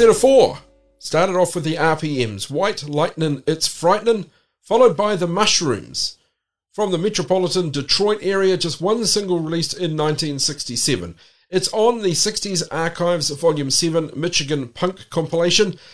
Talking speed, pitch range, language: 135 wpm, 140-185 Hz, English